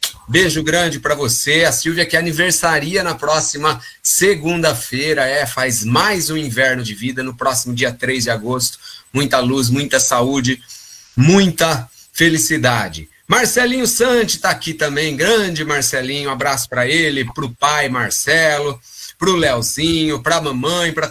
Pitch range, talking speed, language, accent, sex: 130-165 Hz, 135 wpm, Portuguese, Brazilian, male